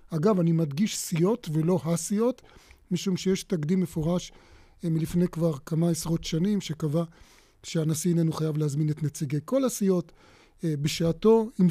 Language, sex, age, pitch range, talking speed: Hebrew, male, 30-49, 155-180 Hz, 135 wpm